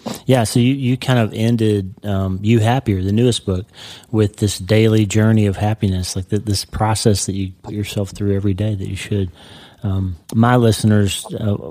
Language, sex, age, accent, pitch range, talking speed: English, male, 30-49, American, 100-110 Hz, 190 wpm